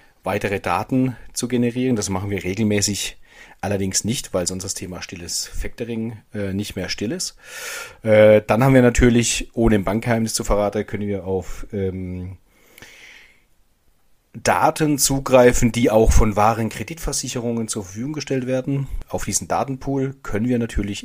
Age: 40-59